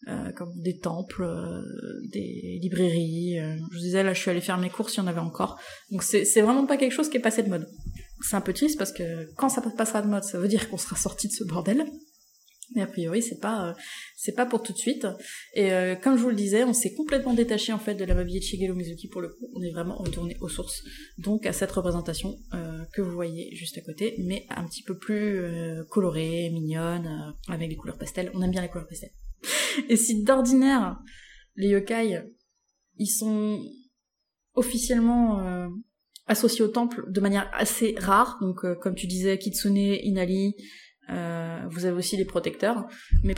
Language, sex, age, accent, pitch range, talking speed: French, female, 20-39, French, 175-225 Hz, 215 wpm